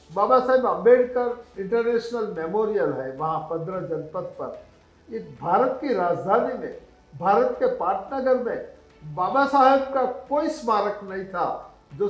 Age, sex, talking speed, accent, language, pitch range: 50-69, male, 135 wpm, native, Hindi, 175-260 Hz